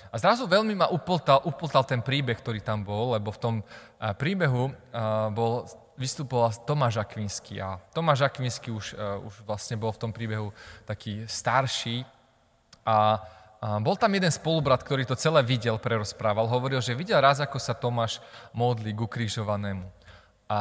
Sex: male